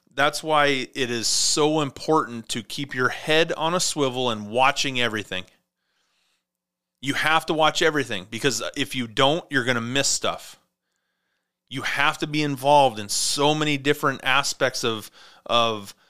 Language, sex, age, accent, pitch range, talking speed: English, male, 30-49, American, 125-155 Hz, 155 wpm